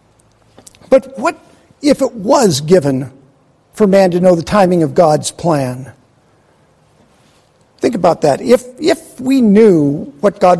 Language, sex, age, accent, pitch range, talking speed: English, male, 50-69, American, 145-230 Hz, 135 wpm